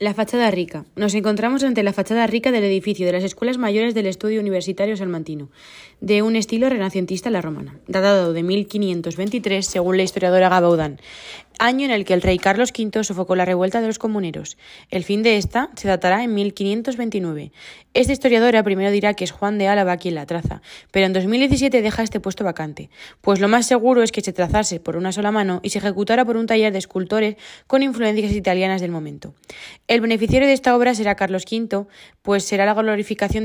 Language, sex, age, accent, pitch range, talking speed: Spanish, female, 20-39, Spanish, 185-230 Hz, 195 wpm